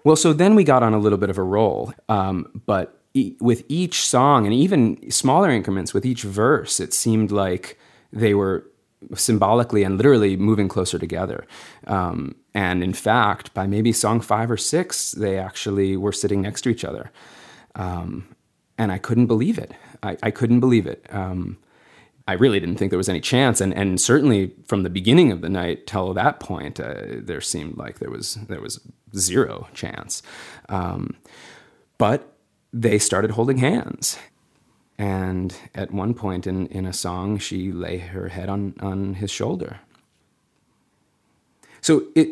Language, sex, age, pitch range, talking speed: English, male, 30-49, 95-115 Hz, 165 wpm